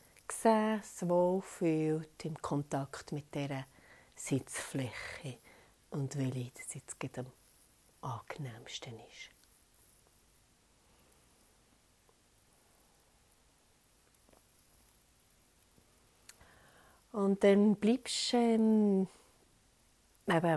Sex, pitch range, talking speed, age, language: female, 135-195 Hz, 55 wpm, 40-59, German